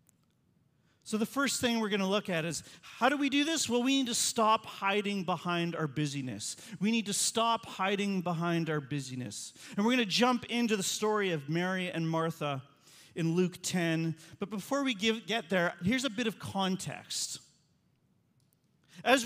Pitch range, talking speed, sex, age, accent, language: 150-225 Hz, 180 wpm, male, 40-59, American, English